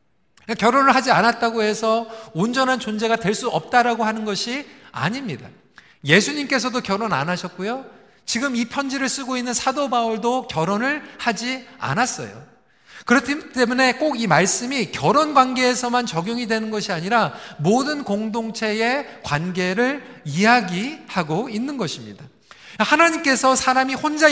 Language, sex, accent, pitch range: Korean, male, native, 210-260 Hz